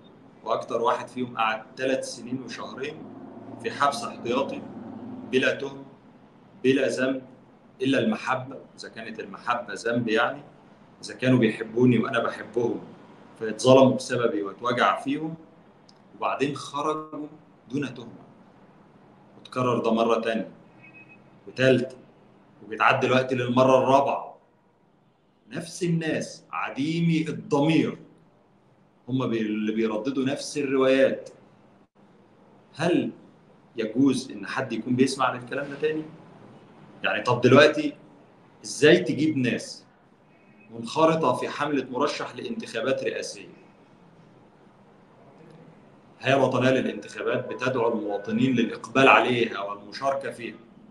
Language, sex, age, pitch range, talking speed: Arabic, male, 40-59, 120-145 Hz, 100 wpm